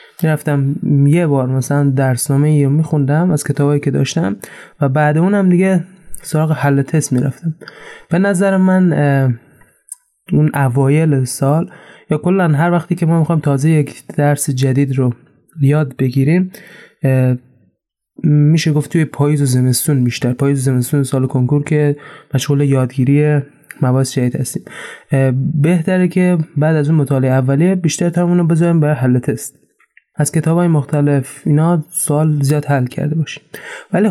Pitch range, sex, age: 140-165 Hz, male, 20-39